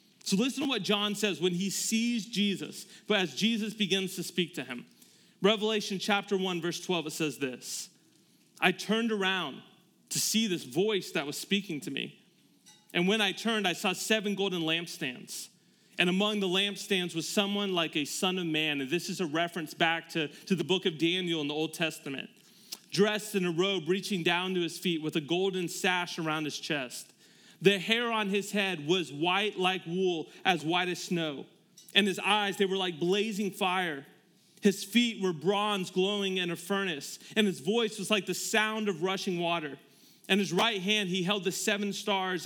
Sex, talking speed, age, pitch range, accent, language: male, 195 wpm, 30-49, 175-205 Hz, American, English